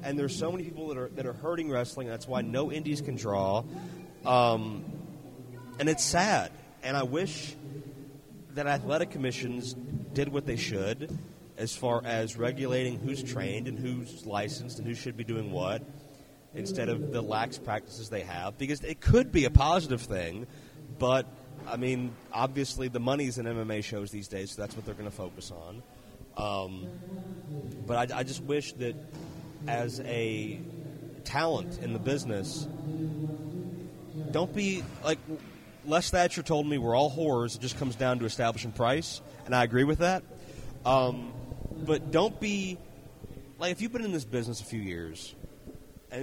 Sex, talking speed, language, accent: male, 165 wpm, English, American